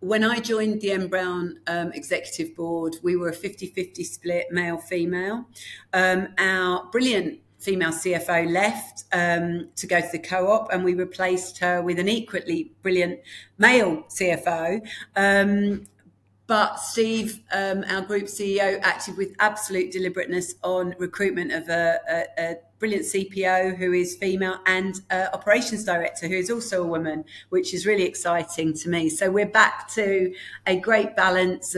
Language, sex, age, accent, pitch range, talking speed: English, female, 40-59, British, 175-195 Hz, 145 wpm